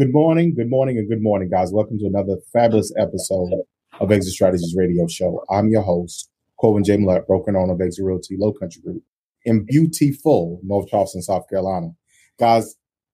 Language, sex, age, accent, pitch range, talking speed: English, male, 30-49, American, 105-125 Hz, 180 wpm